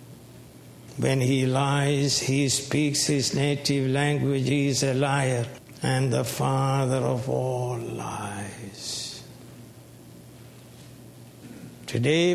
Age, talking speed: 60-79, 90 wpm